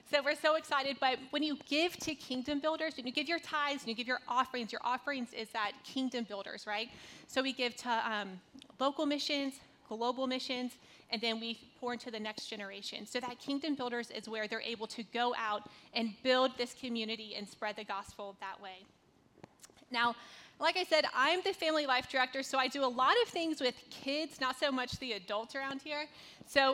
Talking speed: 205 wpm